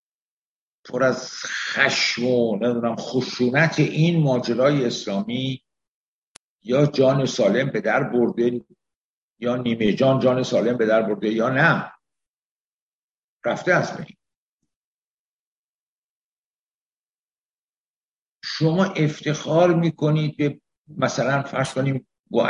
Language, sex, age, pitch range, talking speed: Persian, male, 60-79, 125-160 Hz, 90 wpm